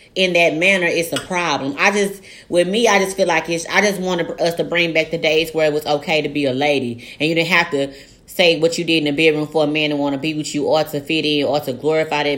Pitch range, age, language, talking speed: 160-205 Hz, 20-39, English, 295 wpm